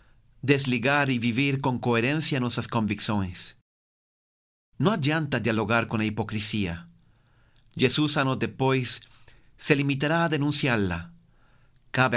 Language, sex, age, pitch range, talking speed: Portuguese, male, 40-59, 115-140 Hz, 105 wpm